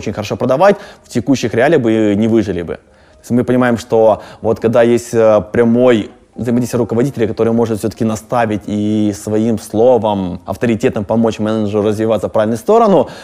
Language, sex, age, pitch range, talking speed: Russian, male, 20-39, 105-130 Hz, 150 wpm